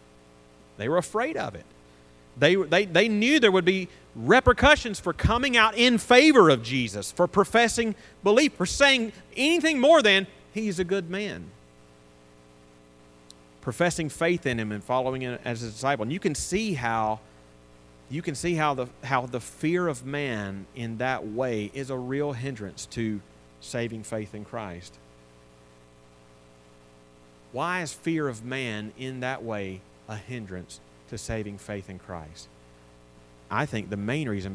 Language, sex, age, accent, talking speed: English, male, 40-59, American, 150 wpm